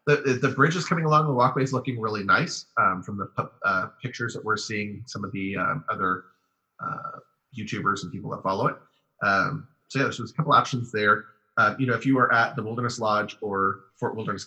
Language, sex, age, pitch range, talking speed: English, male, 30-49, 105-130 Hz, 230 wpm